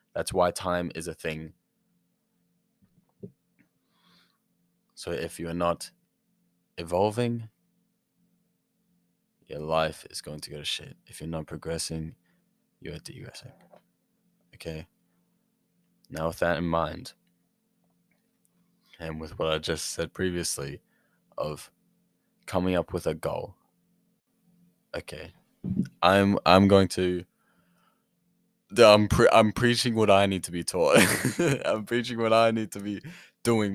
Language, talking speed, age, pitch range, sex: English, 120 wpm, 20-39, 85-115 Hz, male